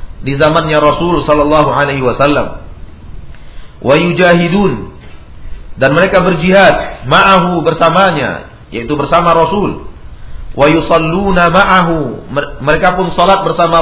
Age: 50-69